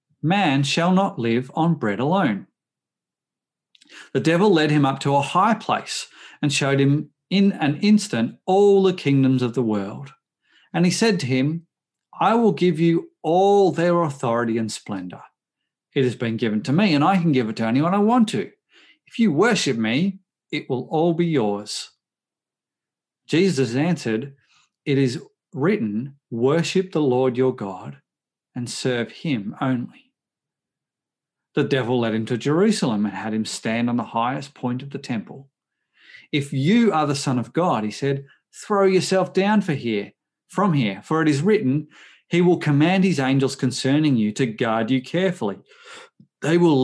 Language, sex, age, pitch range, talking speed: English, male, 40-59, 125-175 Hz, 165 wpm